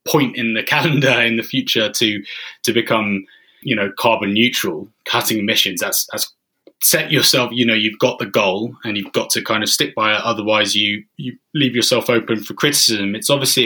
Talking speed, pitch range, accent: 200 wpm, 95-115 Hz, British